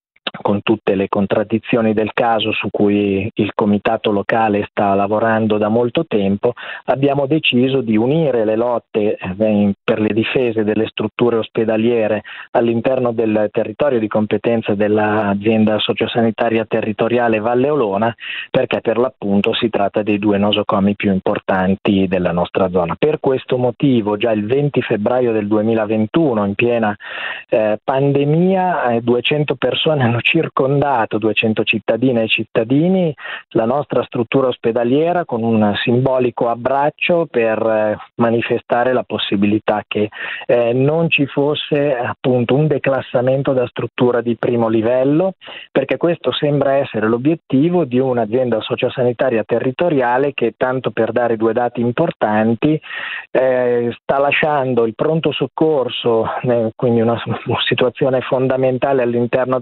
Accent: native